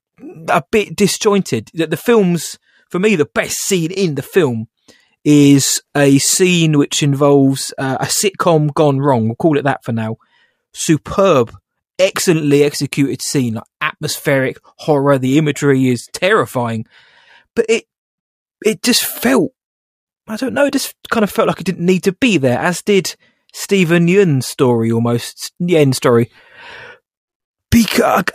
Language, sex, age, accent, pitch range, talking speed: English, male, 20-39, British, 135-180 Hz, 150 wpm